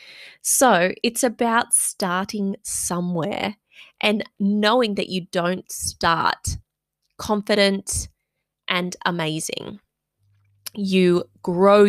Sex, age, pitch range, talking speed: female, 20-39, 180-220 Hz, 80 wpm